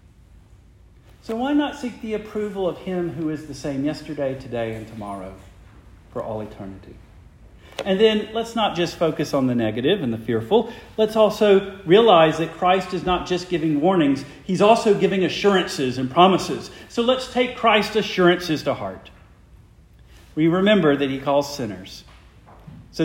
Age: 50-69